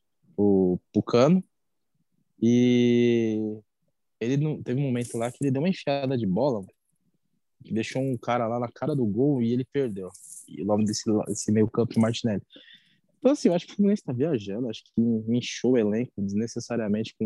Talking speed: 170 wpm